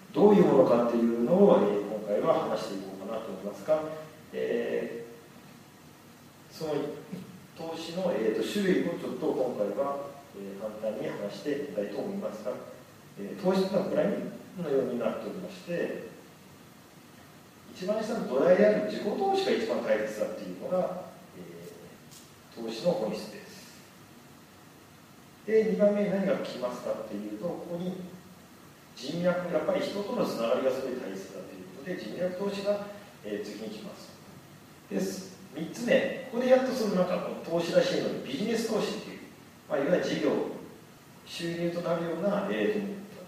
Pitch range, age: 140-205 Hz, 40-59